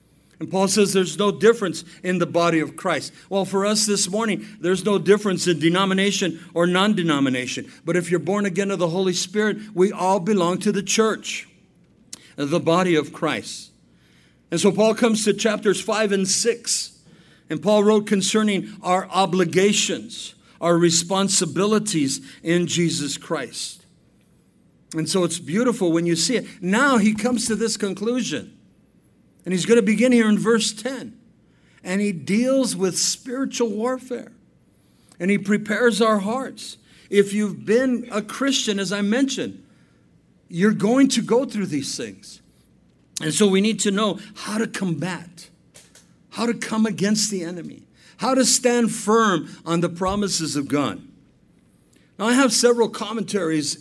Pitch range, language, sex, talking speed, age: 170-220 Hz, English, male, 155 wpm, 50-69